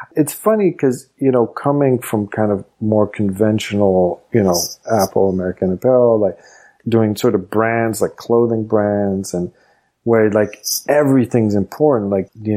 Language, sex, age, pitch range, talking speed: English, male, 40-59, 100-120 Hz, 150 wpm